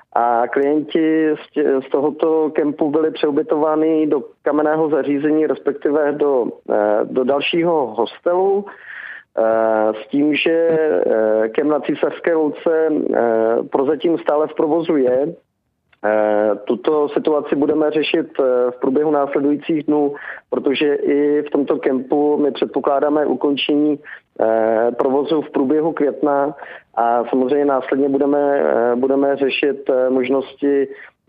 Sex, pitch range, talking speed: male, 125-150 Hz, 105 wpm